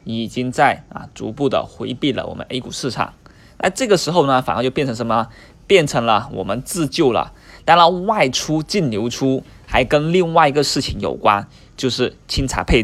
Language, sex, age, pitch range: Chinese, male, 20-39, 115-145 Hz